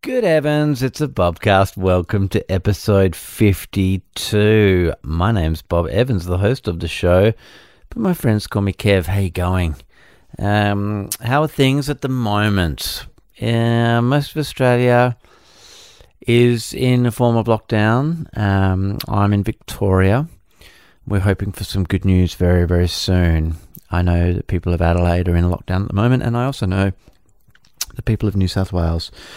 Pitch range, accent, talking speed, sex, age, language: 90-115 Hz, Australian, 160 wpm, male, 30-49, English